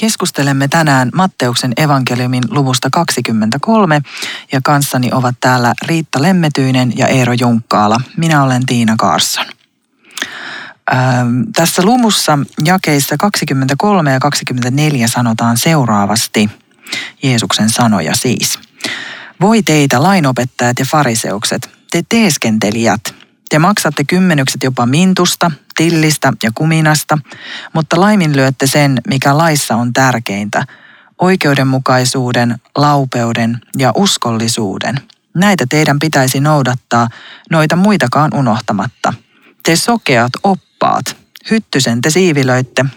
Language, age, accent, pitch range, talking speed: Finnish, 40-59, native, 125-165 Hz, 95 wpm